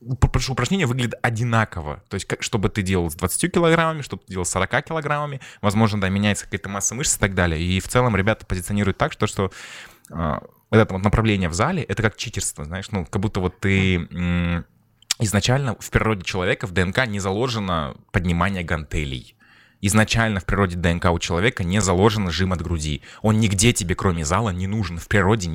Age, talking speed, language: 20-39, 195 wpm, Russian